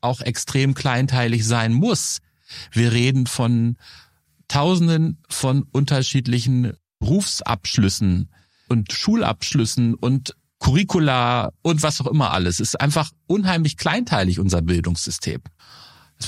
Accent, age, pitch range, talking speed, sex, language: German, 40-59, 105-140 Hz, 105 wpm, male, German